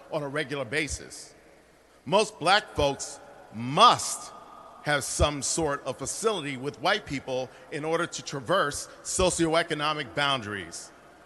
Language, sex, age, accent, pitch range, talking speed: English, male, 40-59, American, 150-205 Hz, 115 wpm